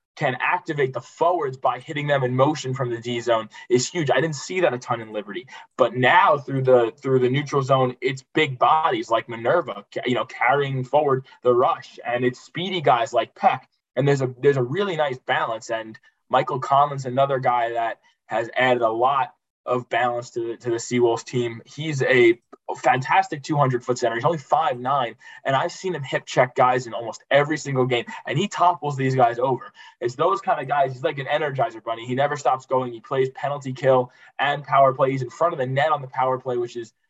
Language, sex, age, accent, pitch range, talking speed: English, male, 20-39, American, 125-150 Hz, 210 wpm